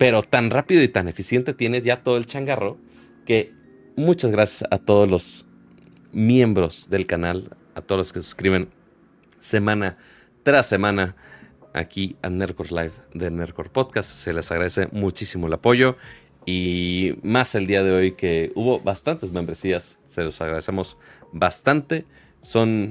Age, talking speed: 30-49, 150 wpm